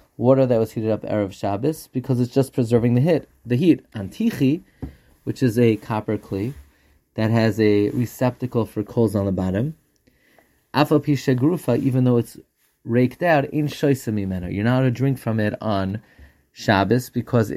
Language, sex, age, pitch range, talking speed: English, male, 30-49, 115-140 Hz, 165 wpm